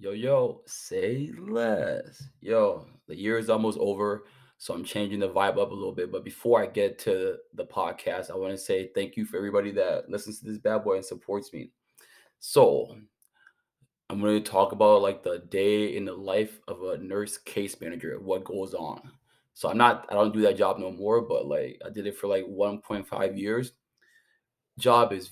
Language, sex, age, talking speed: English, male, 20-39, 200 wpm